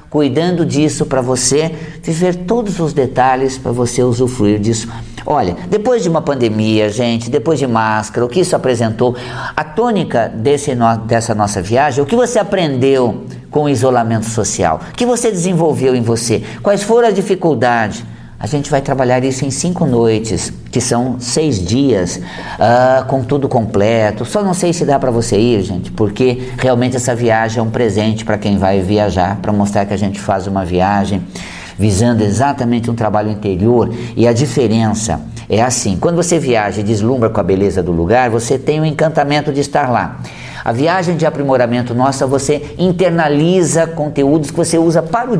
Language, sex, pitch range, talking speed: Portuguese, male, 115-160 Hz, 175 wpm